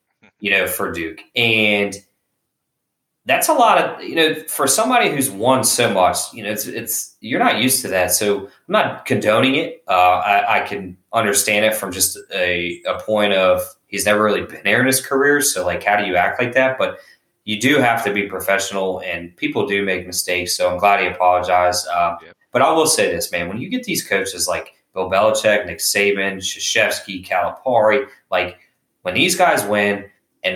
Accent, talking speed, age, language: American, 200 wpm, 20-39, English